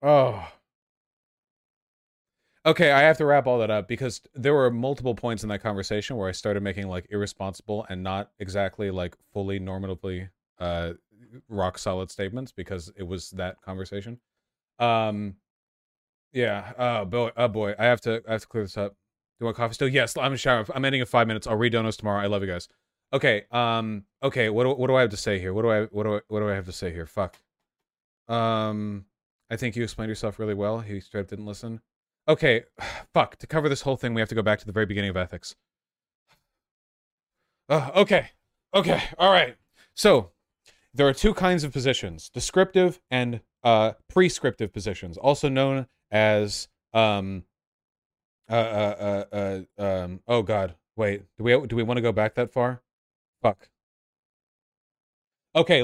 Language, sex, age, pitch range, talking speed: English, male, 30-49, 100-125 Hz, 190 wpm